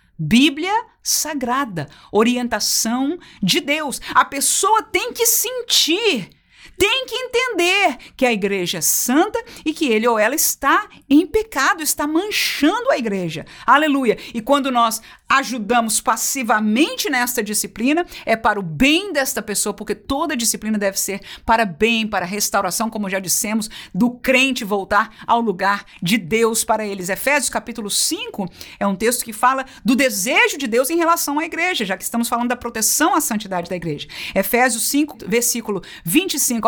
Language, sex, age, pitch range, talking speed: Portuguese, female, 50-69, 220-335 Hz, 155 wpm